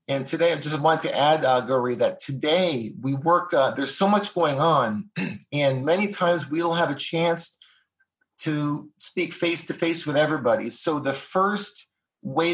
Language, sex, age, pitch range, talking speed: English, male, 30-49, 135-170 Hz, 165 wpm